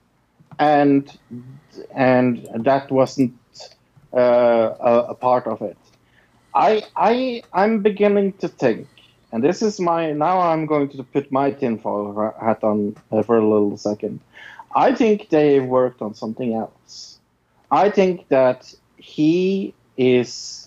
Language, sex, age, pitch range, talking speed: English, male, 50-69, 120-155 Hz, 135 wpm